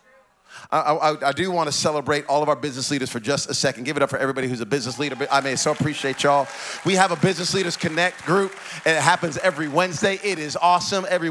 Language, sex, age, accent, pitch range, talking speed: English, male, 30-49, American, 170-215 Hz, 250 wpm